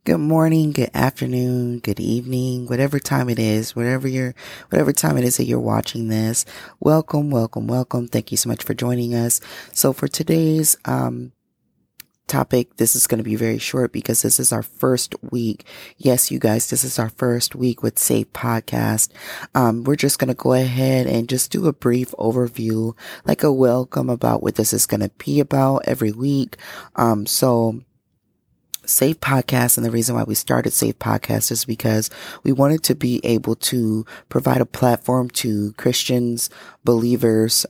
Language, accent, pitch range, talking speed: English, American, 110-130 Hz, 175 wpm